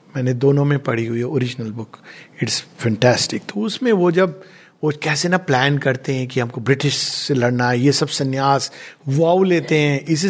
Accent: native